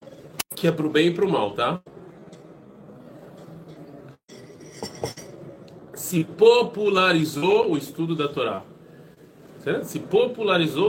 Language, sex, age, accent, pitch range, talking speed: Portuguese, male, 40-59, Brazilian, 145-185 Hz, 105 wpm